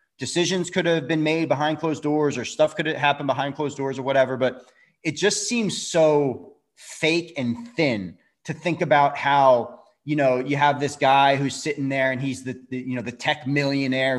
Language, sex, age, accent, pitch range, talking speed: English, male, 30-49, American, 135-170 Hz, 205 wpm